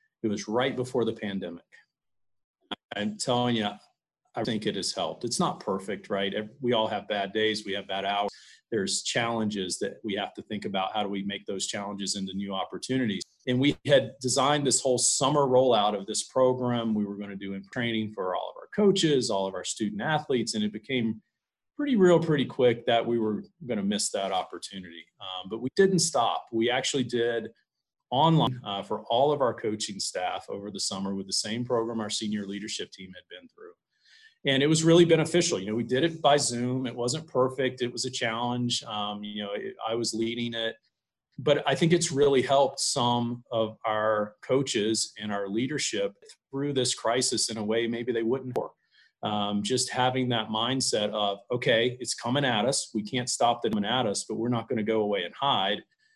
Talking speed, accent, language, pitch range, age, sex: 205 wpm, American, English, 105-130 Hz, 40-59, male